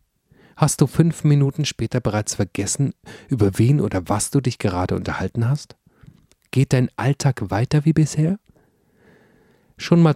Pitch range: 105-145 Hz